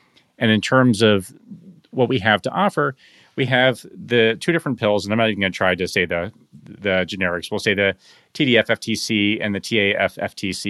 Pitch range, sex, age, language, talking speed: 95-110 Hz, male, 30-49, English, 190 wpm